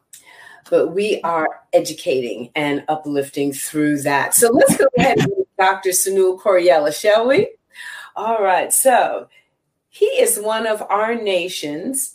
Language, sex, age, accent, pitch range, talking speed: English, female, 40-59, American, 175-245 Hz, 130 wpm